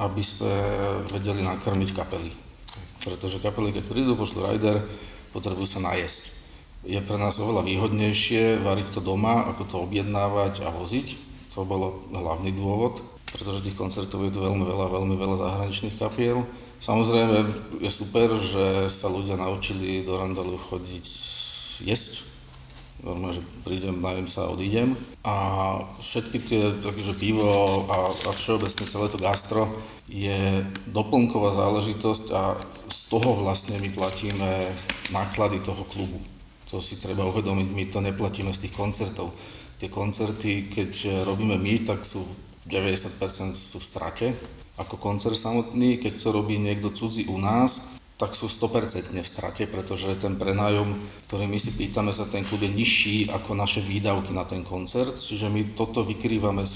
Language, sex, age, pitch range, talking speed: Slovak, male, 40-59, 95-105 Hz, 145 wpm